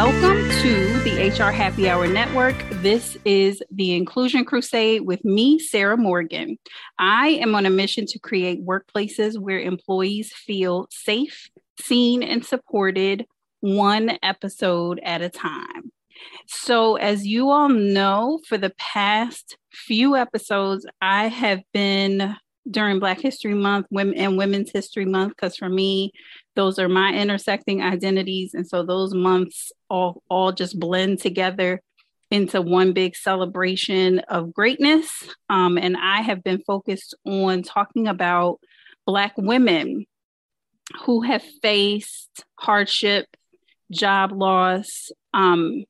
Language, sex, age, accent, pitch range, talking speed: English, female, 30-49, American, 185-220 Hz, 130 wpm